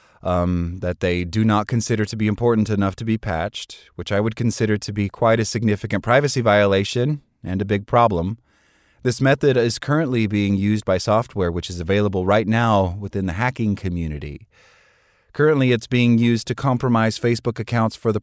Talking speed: 180 wpm